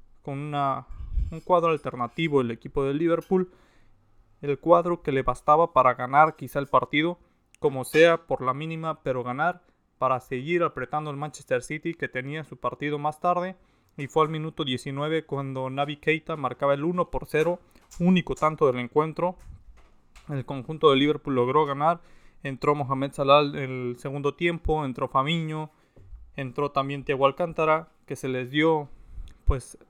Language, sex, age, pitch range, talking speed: Spanish, male, 20-39, 130-160 Hz, 155 wpm